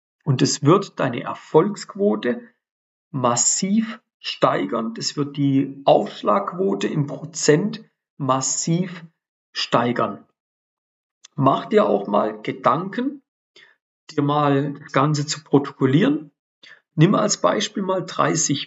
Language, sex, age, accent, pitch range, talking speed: German, male, 40-59, German, 140-190 Hz, 100 wpm